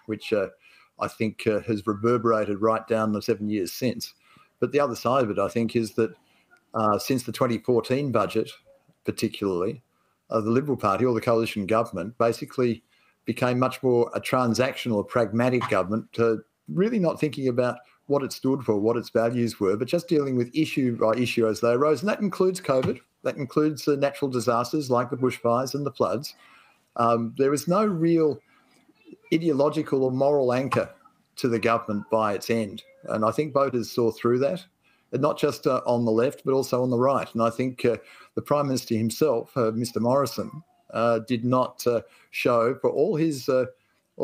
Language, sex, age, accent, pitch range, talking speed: English, male, 50-69, Australian, 115-140 Hz, 185 wpm